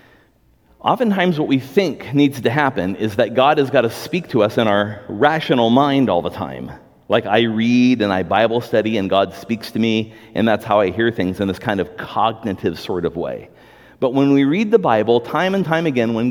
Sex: male